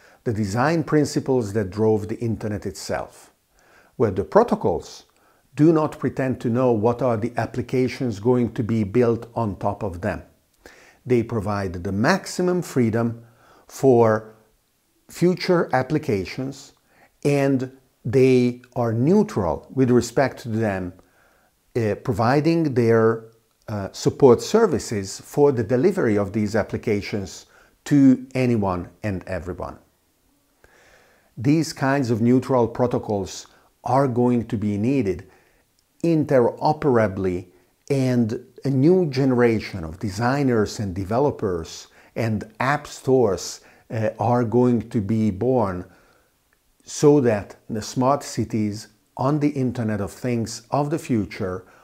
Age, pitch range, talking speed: 50-69, 105-135 Hz, 115 wpm